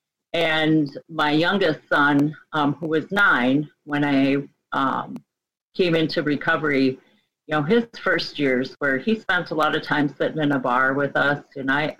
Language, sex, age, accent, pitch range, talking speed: English, female, 40-59, American, 140-175 Hz, 170 wpm